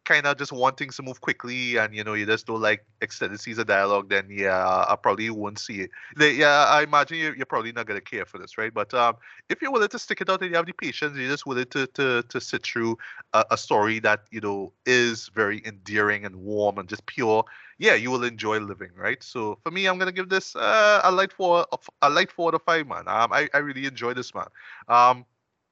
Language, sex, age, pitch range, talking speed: English, male, 20-39, 110-150 Hz, 245 wpm